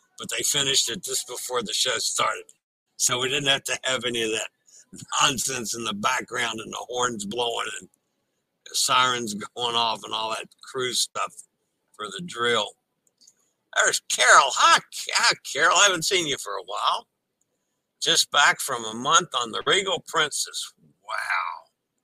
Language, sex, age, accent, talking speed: English, male, 60-79, American, 165 wpm